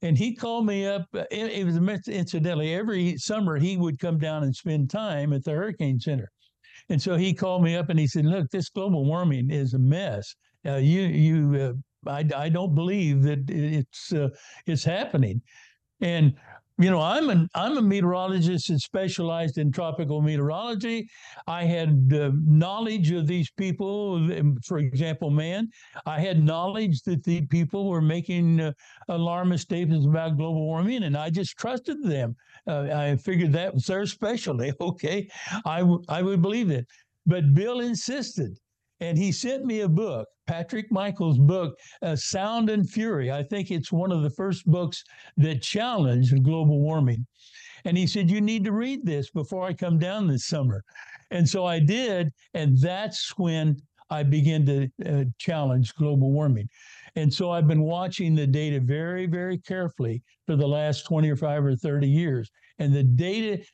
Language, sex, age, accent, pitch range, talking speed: English, male, 60-79, American, 145-185 Hz, 175 wpm